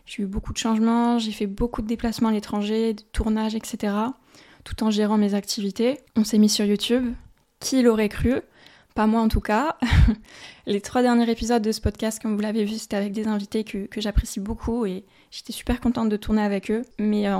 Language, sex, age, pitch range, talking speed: French, female, 20-39, 210-235 Hz, 215 wpm